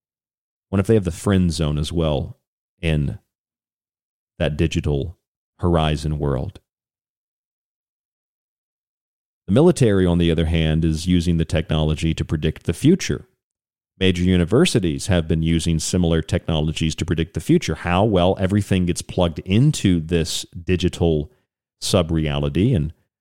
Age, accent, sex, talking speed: 40-59, American, male, 125 wpm